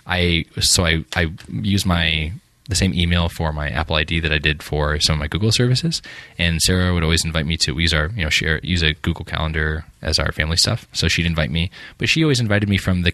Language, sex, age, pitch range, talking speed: English, male, 20-39, 80-100 Hz, 240 wpm